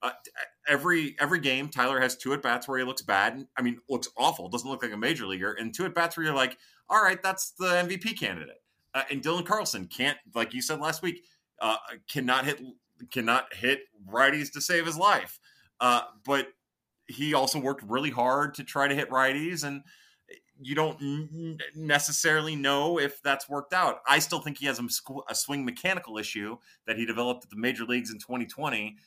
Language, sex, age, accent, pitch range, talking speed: English, male, 30-49, American, 115-155 Hz, 200 wpm